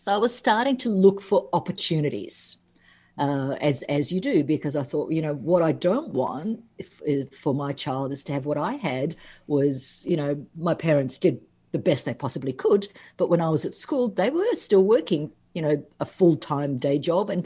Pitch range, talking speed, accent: 140-175 Hz, 215 wpm, Australian